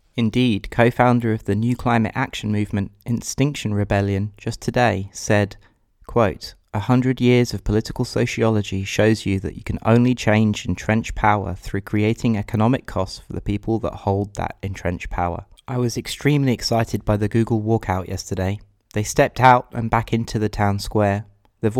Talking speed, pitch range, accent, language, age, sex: 165 wpm, 100-115 Hz, British, English, 20-39, male